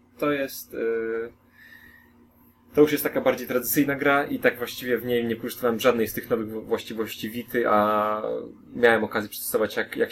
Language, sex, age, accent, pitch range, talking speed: Polish, male, 20-39, native, 105-125 Hz, 170 wpm